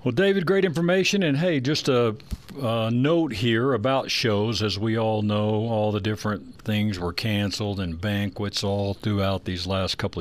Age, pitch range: 60-79, 100-120 Hz